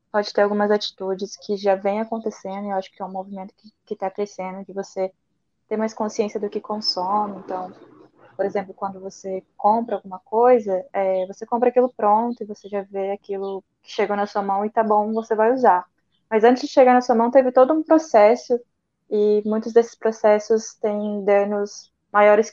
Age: 20-39